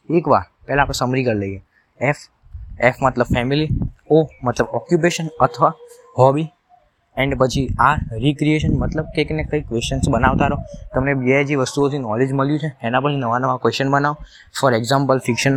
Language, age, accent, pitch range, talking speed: Gujarati, 20-39, native, 125-150 Hz, 165 wpm